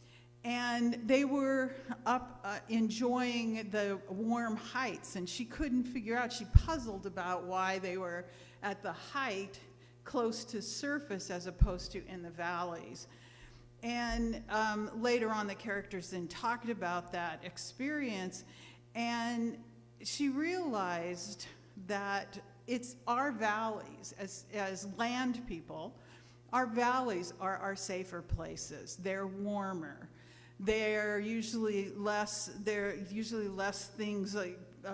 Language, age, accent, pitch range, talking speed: English, 50-69, American, 180-235 Hz, 120 wpm